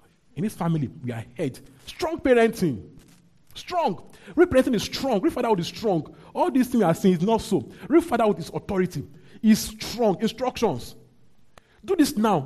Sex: male